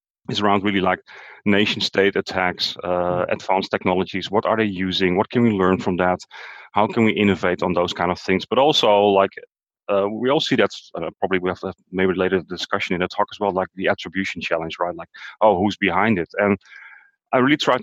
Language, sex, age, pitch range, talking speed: English, male, 30-49, 90-105 Hz, 215 wpm